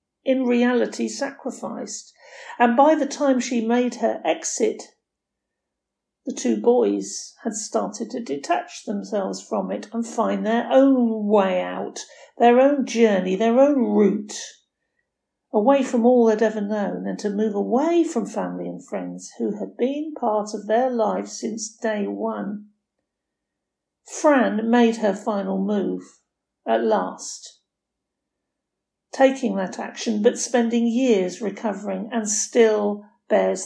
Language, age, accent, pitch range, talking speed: English, 50-69, British, 205-245 Hz, 130 wpm